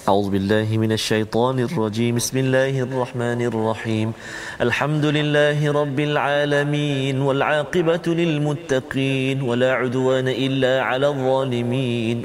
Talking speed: 100 wpm